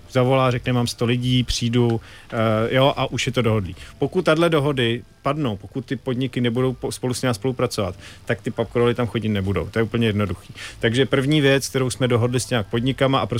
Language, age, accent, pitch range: Czech, 40-59, native, 110-130 Hz